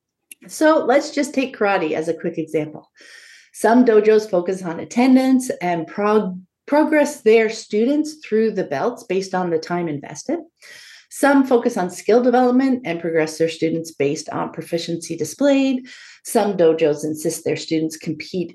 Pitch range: 175-275 Hz